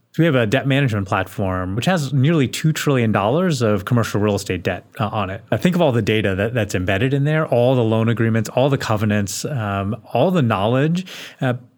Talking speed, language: 215 wpm, English